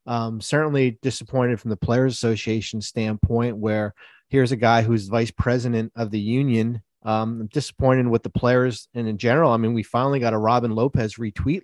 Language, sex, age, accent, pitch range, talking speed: English, male, 30-49, American, 110-130 Hz, 180 wpm